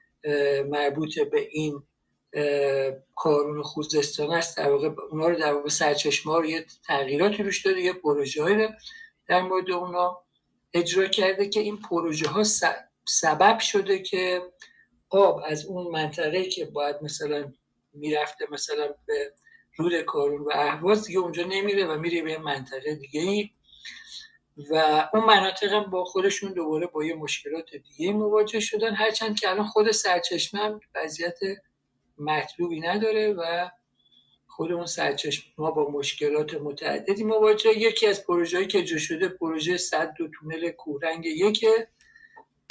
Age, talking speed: 60-79, 135 wpm